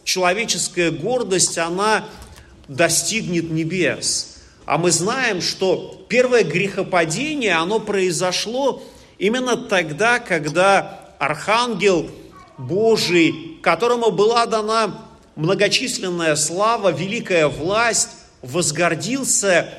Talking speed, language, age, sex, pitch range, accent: 80 wpm, Russian, 40-59, male, 165-230 Hz, native